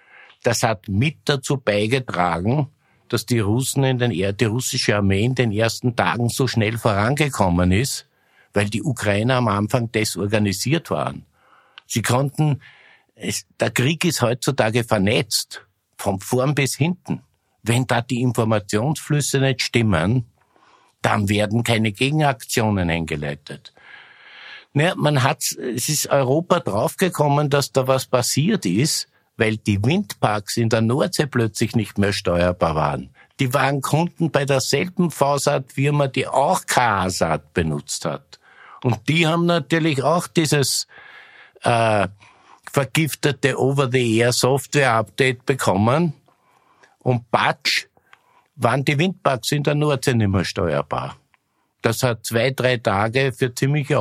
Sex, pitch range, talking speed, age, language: male, 110-140 Hz, 125 wpm, 60-79, German